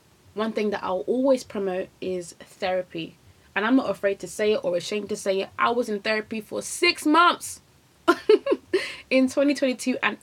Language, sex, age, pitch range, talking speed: English, female, 20-39, 185-225 Hz, 175 wpm